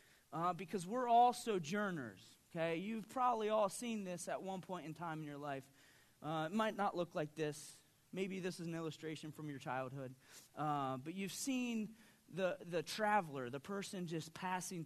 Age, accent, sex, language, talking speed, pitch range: 30-49, American, male, English, 180 wpm, 135-200 Hz